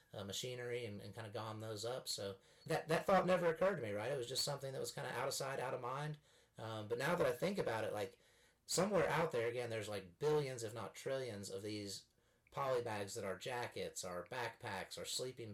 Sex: male